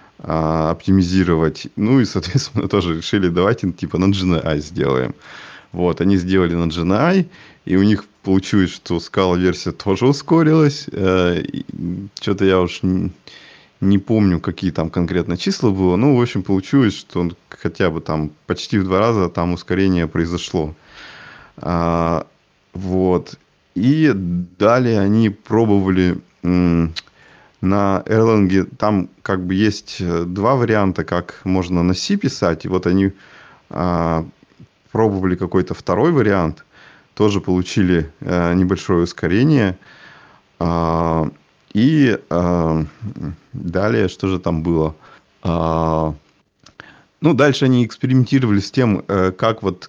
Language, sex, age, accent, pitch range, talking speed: Russian, male, 20-39, native, 85-105 Hz, 120 wpm